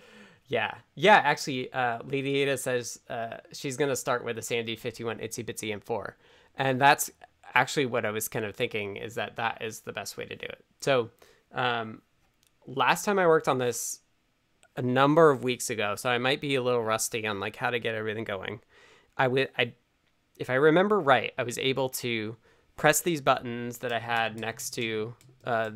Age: 20-39